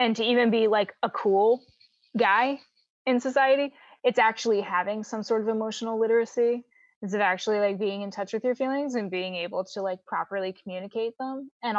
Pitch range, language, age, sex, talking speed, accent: 195-240 Hz, English, 20-39, female, 190 wpm, American